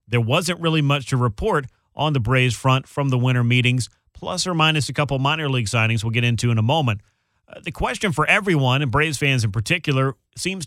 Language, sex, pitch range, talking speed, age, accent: English, male, 120-150 Hz, 220 wpm, 40-59, American